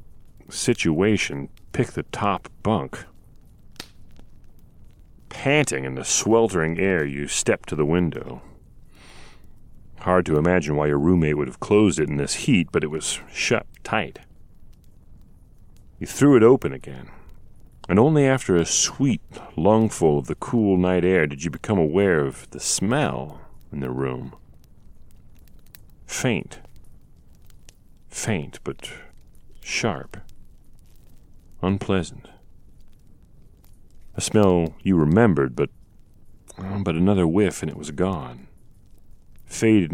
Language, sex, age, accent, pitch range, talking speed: English, male, 40-59, American, 75-95 Hz, 115 wpm